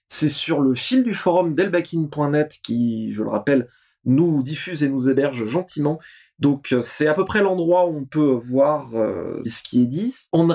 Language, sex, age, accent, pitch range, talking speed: French, male, 20-39, French, 135-195 Hz, 195 wpm